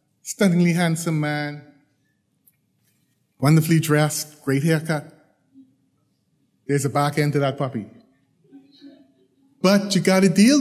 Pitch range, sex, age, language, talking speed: 150-210 Hz, male, 30-49, English, 105 wpm